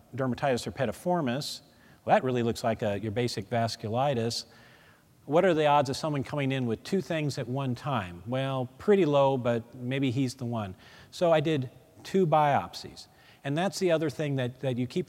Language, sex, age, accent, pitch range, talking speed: English, male, 40-59, American, 115-145 Hz, 185 wpm